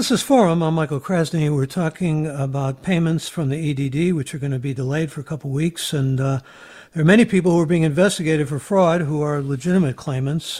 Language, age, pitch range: English, 60-79, 140-170 Hz